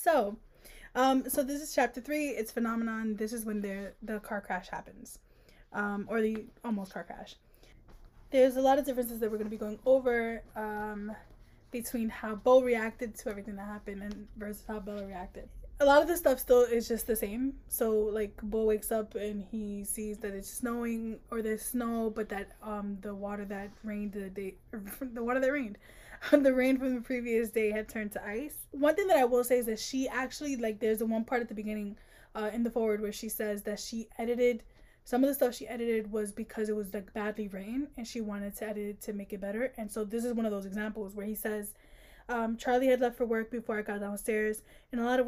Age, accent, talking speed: 10-29, American, 230 wpm